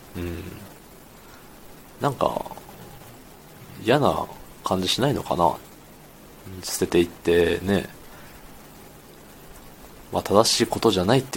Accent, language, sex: native, Japanese, male